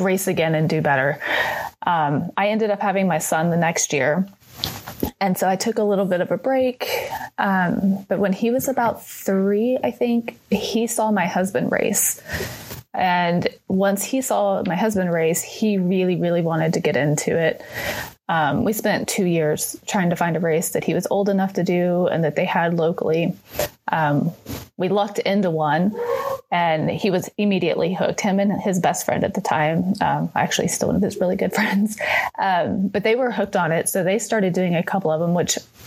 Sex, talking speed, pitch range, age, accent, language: female, 200 wpm, 170-205 Hz, 30-49, American, English